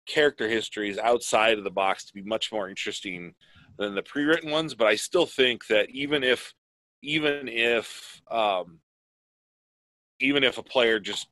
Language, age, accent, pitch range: English, 30-49, American, 100-125 Hz